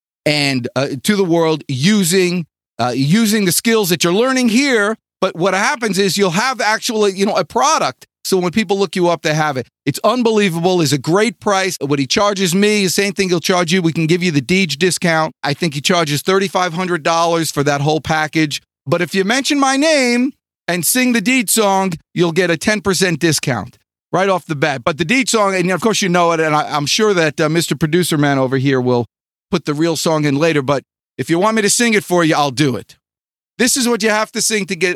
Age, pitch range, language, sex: 40-59, 165-230 Hz, English, male